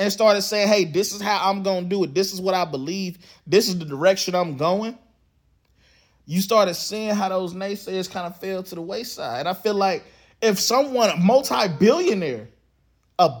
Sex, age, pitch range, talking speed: male, 20-39, 175-215 Hz, 195 wpm